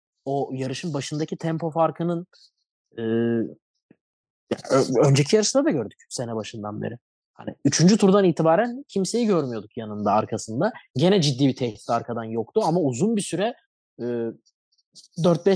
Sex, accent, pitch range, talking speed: male, native, 130-175 Hz, 125 wpm